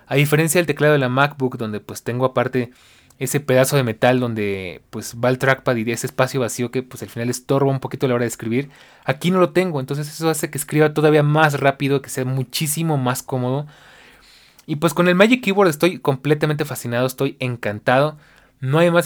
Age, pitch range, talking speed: 20-39, 125-150 Hz, 215 wpm